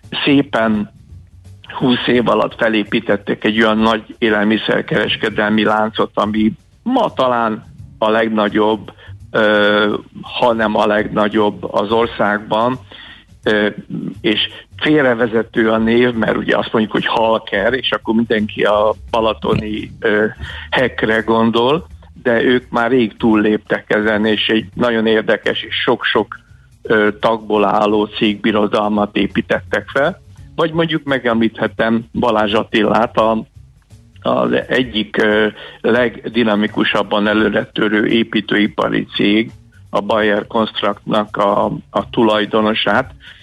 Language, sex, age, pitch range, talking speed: Hungarian, male, 60-79, 105-115 Hz, 100 wpm